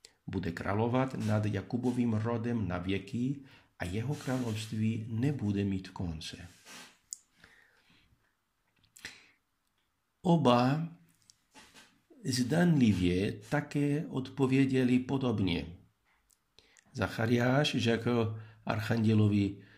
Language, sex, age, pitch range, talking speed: Czech, male, 50-69, 105-130 Hz, 65 wpm